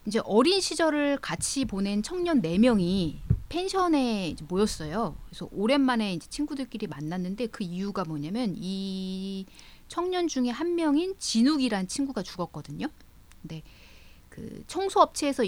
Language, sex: Korean, female